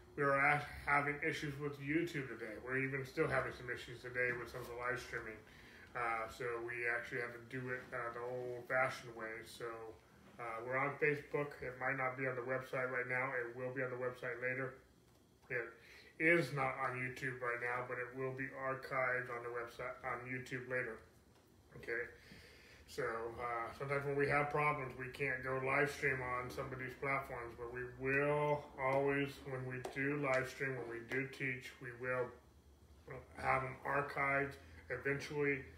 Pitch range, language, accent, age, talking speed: 120-140 Hz, English, American, 20-39, 185 wpm